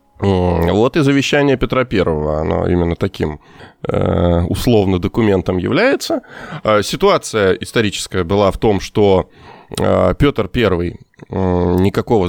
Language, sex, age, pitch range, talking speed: Russian, male, 20-39, 85-115 Hz, 100 wpm